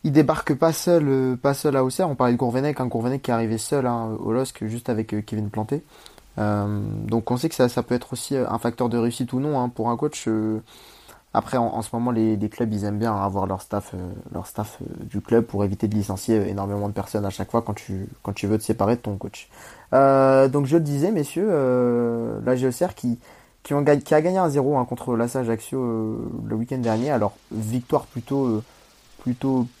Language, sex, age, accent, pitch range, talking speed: French, male, 20-39, French, 110-130 Hz, 235 wpm